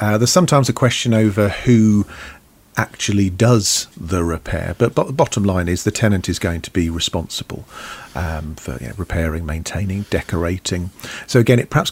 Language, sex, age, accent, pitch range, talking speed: English, male, 40-59, British, 85-105 Hz, 160 wpm